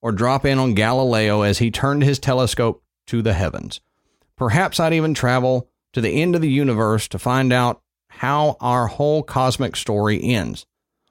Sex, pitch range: male, 120-165 Hz